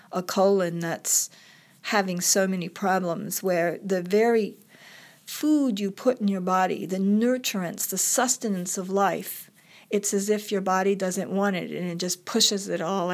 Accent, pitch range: American, 180-220 Hz